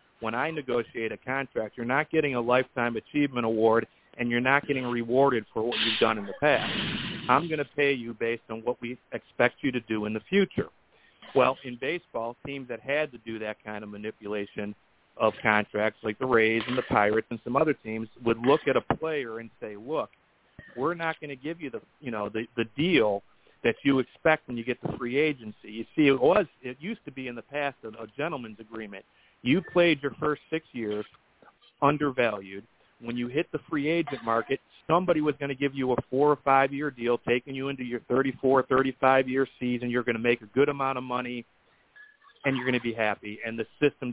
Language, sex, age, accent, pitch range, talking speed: English, male, 50-69, American, 115-140 Hz, 215 wpm